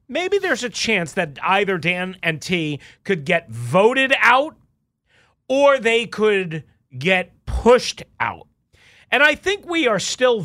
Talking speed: 145 wpm